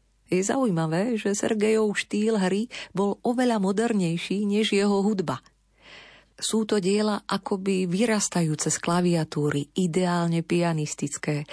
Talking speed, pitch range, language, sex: 110 wpm, 155-205 Hz, Slovak, female